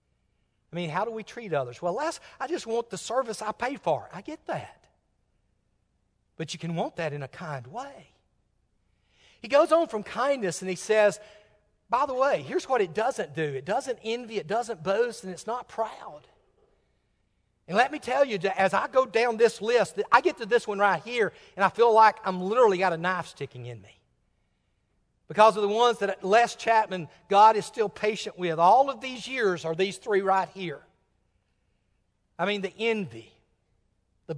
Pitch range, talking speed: 150-230 Hz, 195 wpm